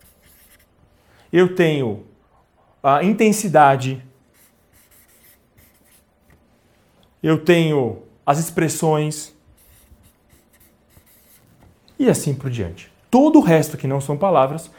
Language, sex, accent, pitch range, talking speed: Portuguese, male, Brazilian, 145-215 Hz, 75 wpm